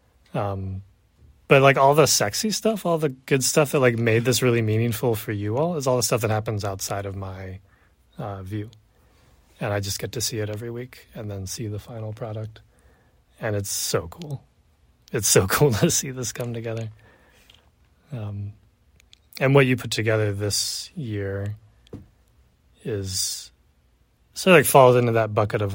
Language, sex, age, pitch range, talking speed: English, male, 30-49, 100-125 Hz, 175 wpm